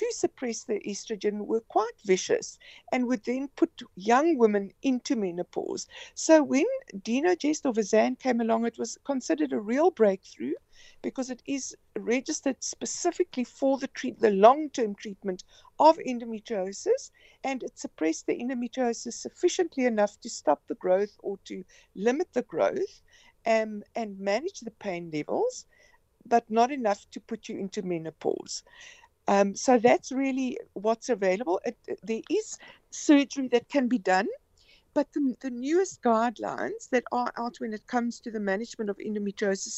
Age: 60-79